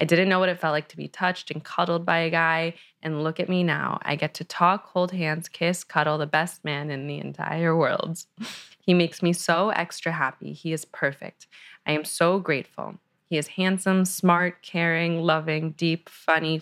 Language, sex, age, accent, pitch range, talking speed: English, female, 20-39, American, 150-175 Hz, 200 wpm